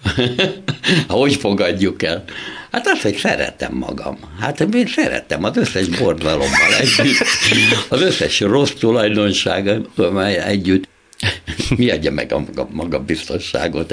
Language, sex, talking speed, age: Hungarian, male, 110 wpm, 60-79